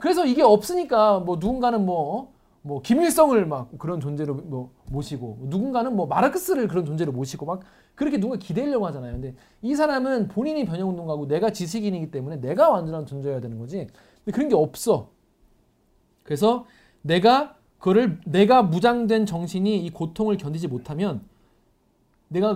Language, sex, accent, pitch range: Korean, male, native, 140-215 Hz